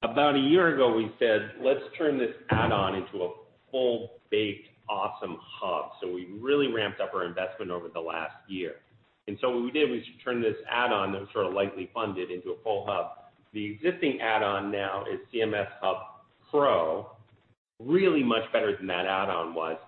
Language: English